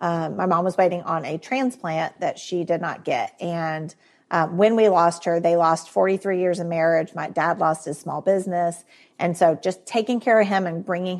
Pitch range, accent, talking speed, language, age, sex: 165-195 Hz, American, 215 wpm, English, 40-59, female